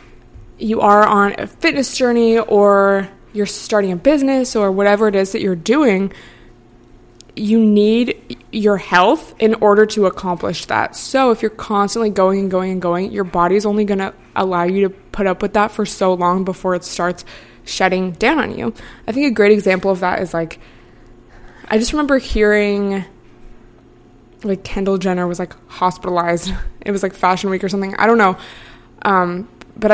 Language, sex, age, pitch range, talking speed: English, female, 20-39, 180-215 Hz, 180 wpm